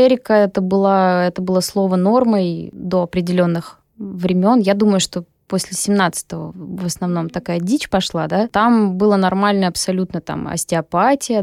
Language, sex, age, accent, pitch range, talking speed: Russian, female, 20-39, native, 185-230 Hz, 135 wpm